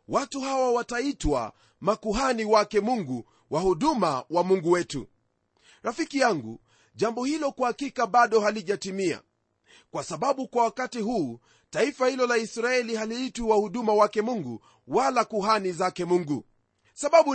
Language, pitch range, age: Swahili, 205-255 Hz, 30-49